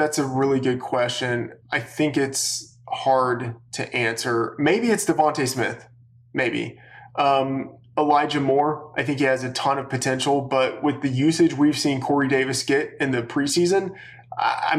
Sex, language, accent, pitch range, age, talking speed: male, English, American, 125-140 Hz, 20-39, 160 wpm